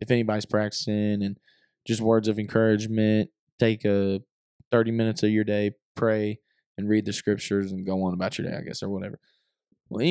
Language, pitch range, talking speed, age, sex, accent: English, 105-130 Hz, 185 wpm, 20-39, male, American